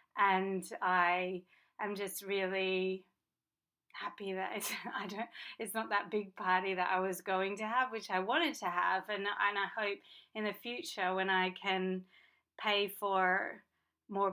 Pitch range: 185-210 Hz